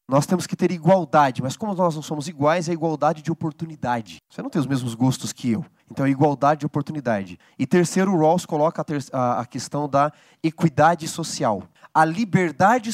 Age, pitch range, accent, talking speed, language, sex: 20-39, 155-225 Hz, Brazilian, 195 wpm, Portuguese, male